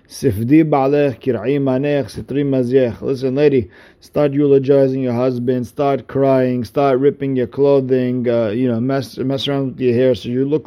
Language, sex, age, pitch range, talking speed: English, male, 50-69, 115-140 Hz, 135 wpm